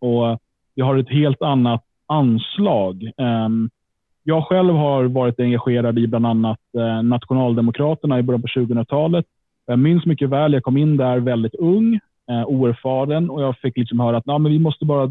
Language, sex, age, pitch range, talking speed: Swedish, male, 30-49, 120-155 Hz, 165 wpm